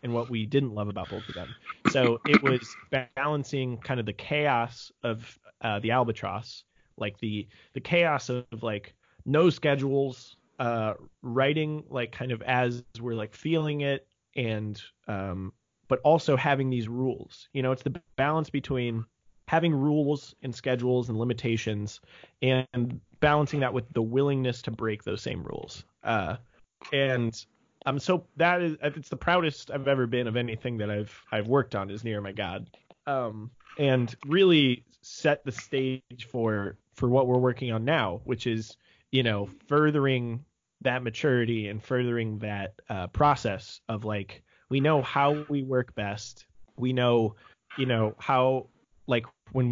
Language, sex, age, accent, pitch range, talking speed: English, male, 30-49, American, 110-135 Hz, 160 wpm